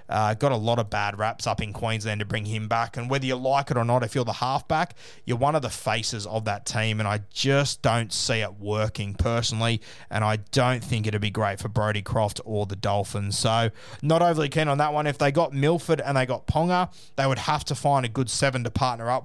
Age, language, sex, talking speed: 20-39, English, male, 250 wpm